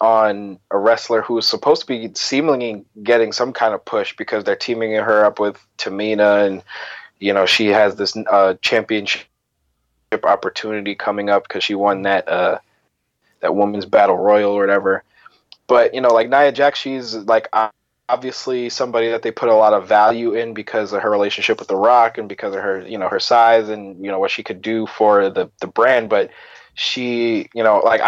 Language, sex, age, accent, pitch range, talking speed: English, male, 20-39, American, 105-120 Hz, 195 wpm